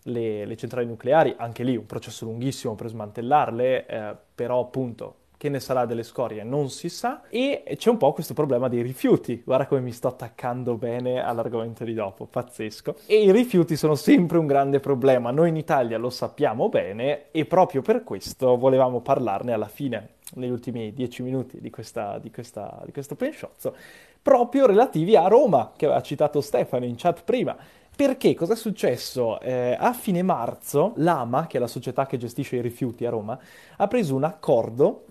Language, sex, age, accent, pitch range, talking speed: Italian, male, 20-39, native, 120-165 Hz, 185 wpm